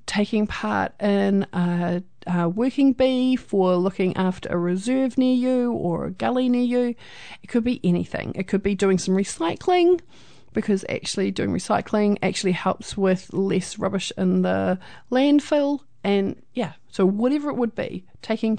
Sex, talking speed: female, 160 wpm